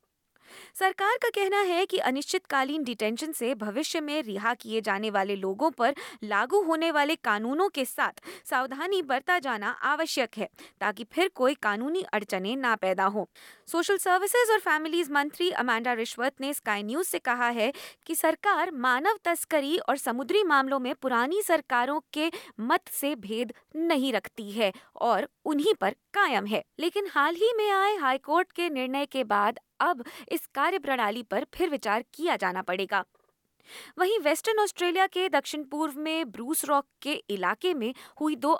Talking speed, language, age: 160 wpm, Hindi, 20-39